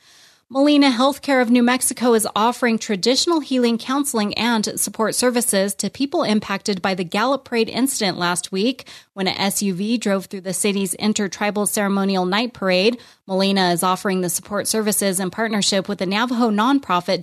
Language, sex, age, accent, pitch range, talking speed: English, female, 30-49, American, 185-225 Hz, 160 wpm